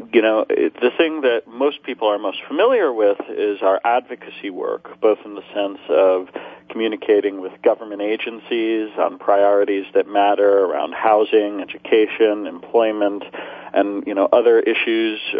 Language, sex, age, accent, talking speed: English, male, 40-59, American, 145 wpm